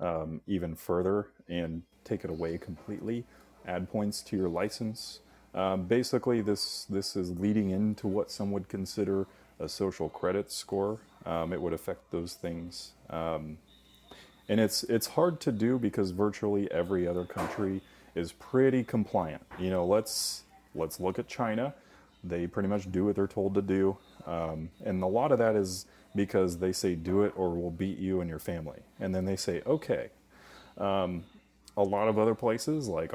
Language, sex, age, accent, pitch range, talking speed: English, male, 30-49, American, 85-105 Hz, 175 wpm